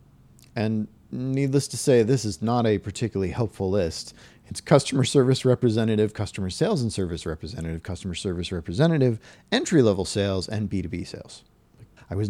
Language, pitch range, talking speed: English, 95-140 Hz, 145 wpm